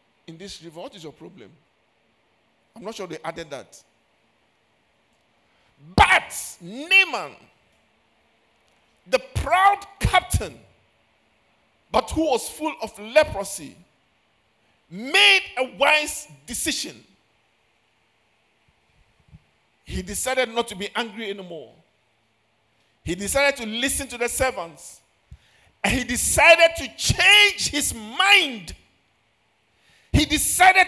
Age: 50-69